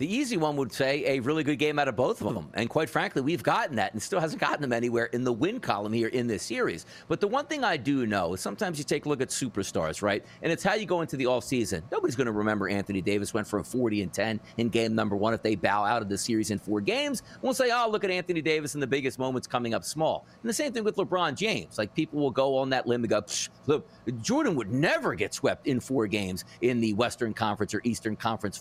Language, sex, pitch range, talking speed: English, male, 115-180 Hz, 275 wpm